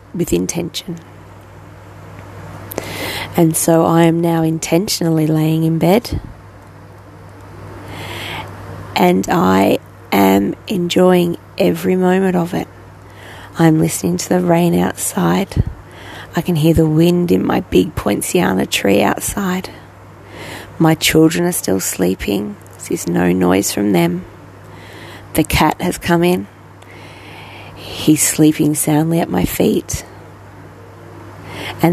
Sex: female